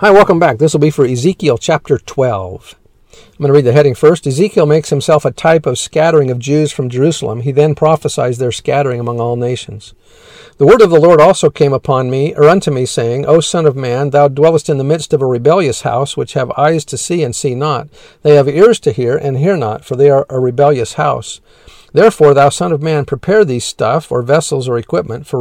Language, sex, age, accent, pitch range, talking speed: English, male, 50-69, American, 130-155 Hz, 230 wpm